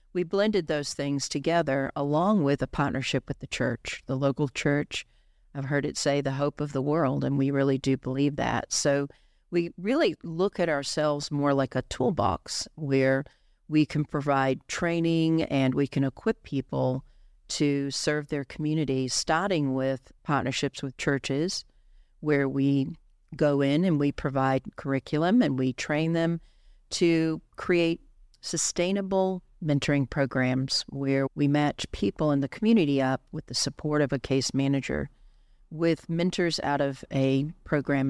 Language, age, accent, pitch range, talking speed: English, 50-69, American, 135-160 Hz, 155 wpm